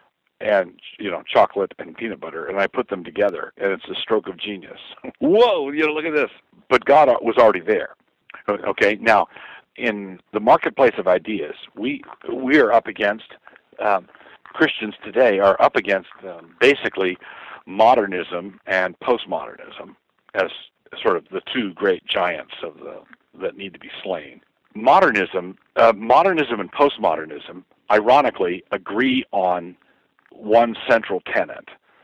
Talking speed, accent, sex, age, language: 145 wpm, American, male, 50-69, English